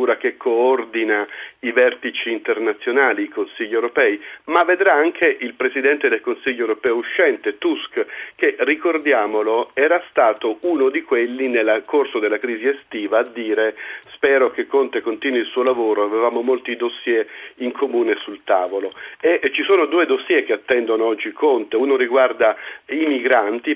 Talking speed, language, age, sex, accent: 150 wpm, Italian, 40-59, male, native